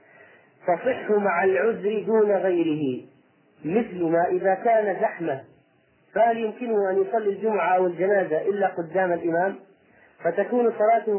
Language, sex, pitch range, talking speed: Arabic, male, 180-225 Hz, 120 wpm